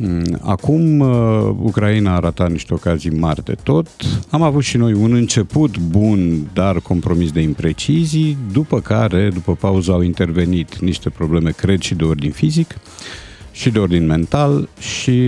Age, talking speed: 50-69, 150 wpm